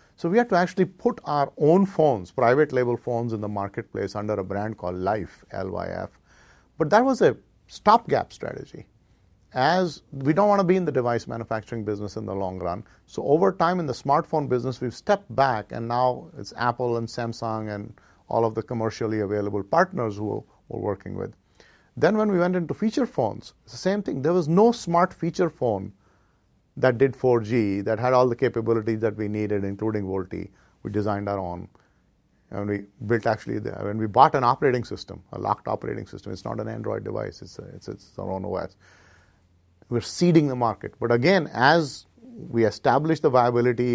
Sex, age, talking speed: male, 50-69, 190 wpm